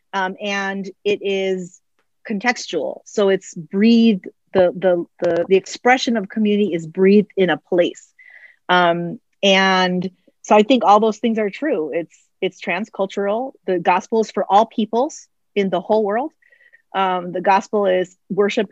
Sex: female